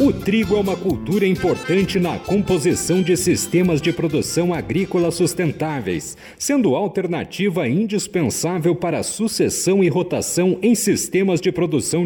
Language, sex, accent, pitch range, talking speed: Portuguese, male, Brazilian, 170-195 Hz, 135 wpm